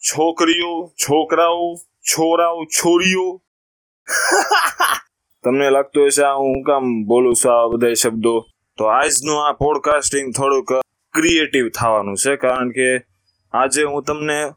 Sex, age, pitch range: male, 20-39, 110-140 Hz